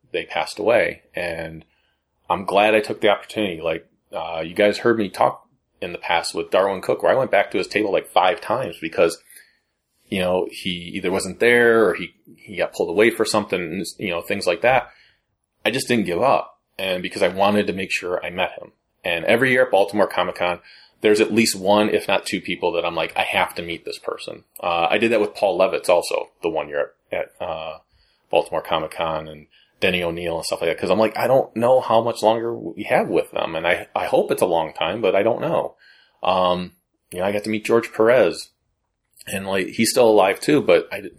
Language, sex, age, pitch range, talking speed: English, male, 30-49, 90-115 Hz, 225 wpm